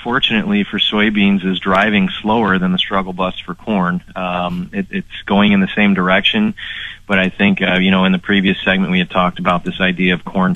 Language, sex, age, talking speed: English, male, 30-49, 210 wpm